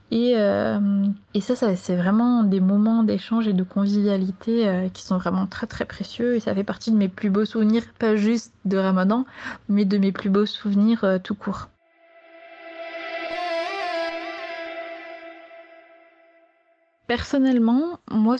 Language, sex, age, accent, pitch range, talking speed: French, female, 20-39, French, 200-245 Hz, 135 wpm